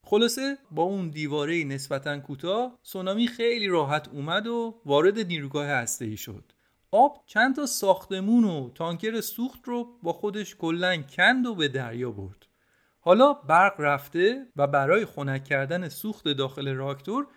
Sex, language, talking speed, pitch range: male, Persian, 140 wpm, 130-210 Hz